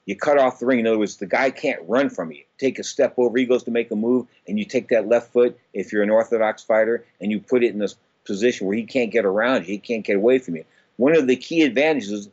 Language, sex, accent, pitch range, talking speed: English, male, American, 115-150 Hz, 285 wpm